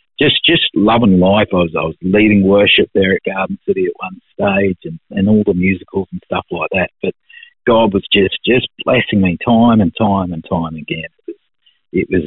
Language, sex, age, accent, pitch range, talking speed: English, male, 50-69, Australian, 85-115 Hz, 205 wpm